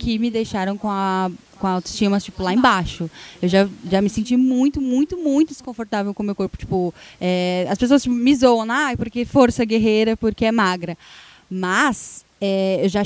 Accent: Brazilian